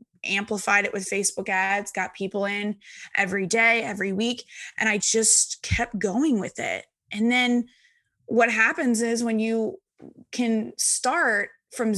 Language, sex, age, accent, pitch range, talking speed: English, female, 20-39, American, 205-245 Hz, 145 wpm